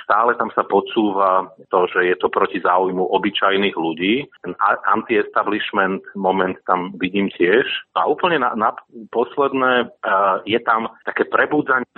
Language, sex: Slovak, male